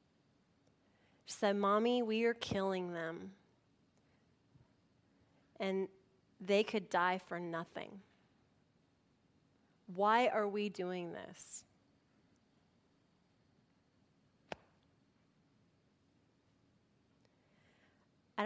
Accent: American